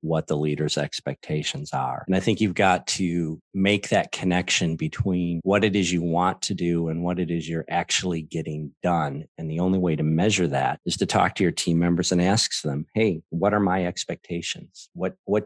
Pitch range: 80-95 Hz